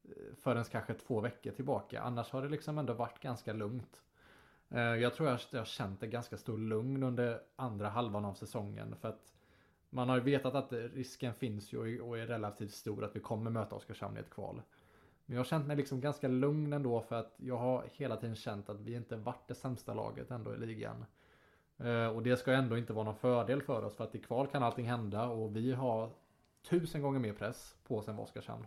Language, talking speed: Swedish, 220 wpm